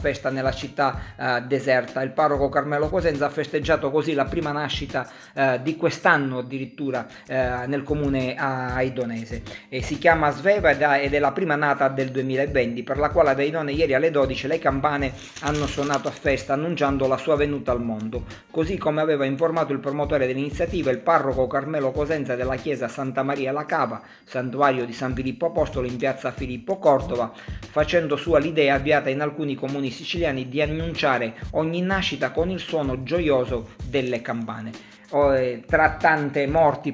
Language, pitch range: Italian, 130-150 Hz